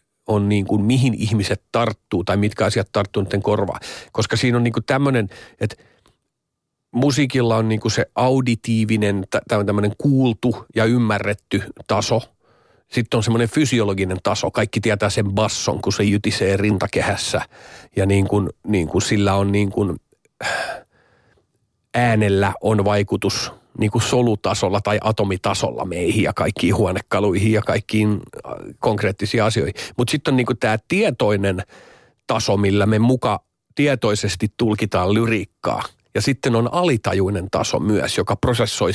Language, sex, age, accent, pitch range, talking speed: Finnish, male, 40-59, native, 105-120 Hz, 135 wpm